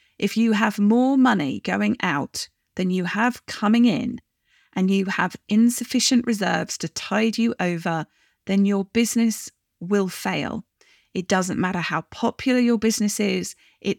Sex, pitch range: female, 185-235 Hz